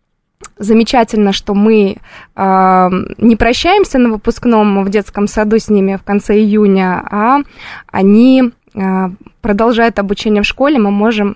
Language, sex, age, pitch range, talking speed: Russian, female, 20-39, 200-230 Hz, 130 wpm